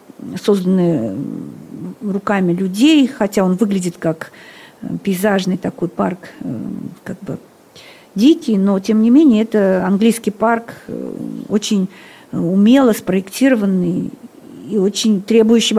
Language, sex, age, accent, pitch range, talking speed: Russian, female, 50-69, native, 205-250 Hz, 100 wpm